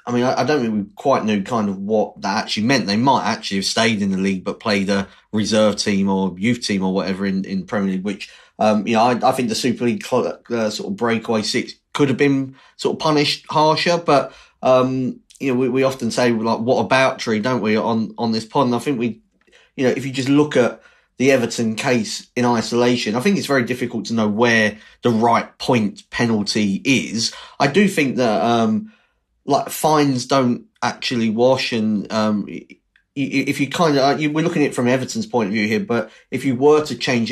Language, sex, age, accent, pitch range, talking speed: English, male, 30-49, British, 110-135 Hz, 225 wpm